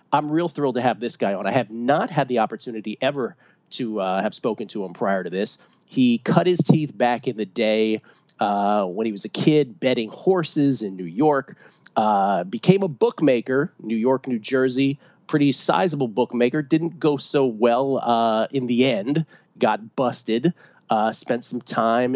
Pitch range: 115-155 Hz